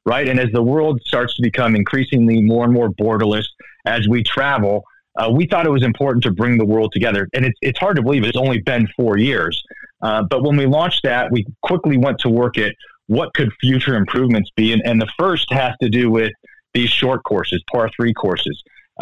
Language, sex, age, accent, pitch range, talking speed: English, male, 30-49, American, 110-130 Hz, 220 wpm